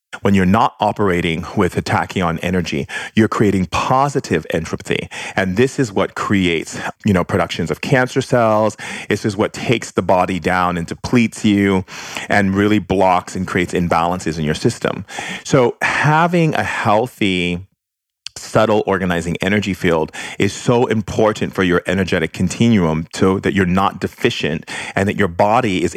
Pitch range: 90-110 Hz